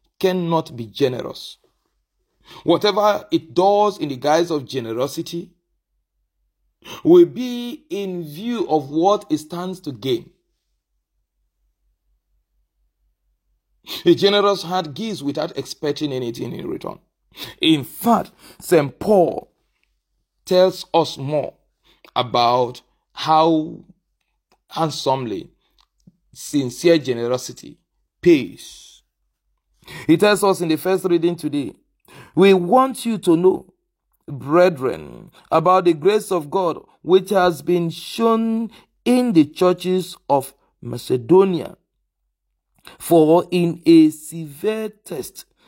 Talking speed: 100 wpm